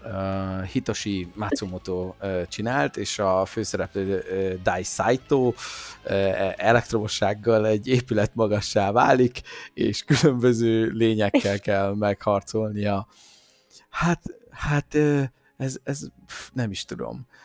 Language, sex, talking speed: Hungarian, male, 85 wpm